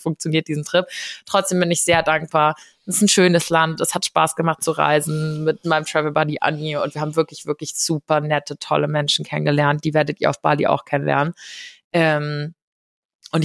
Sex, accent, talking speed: female, German, 190 wpm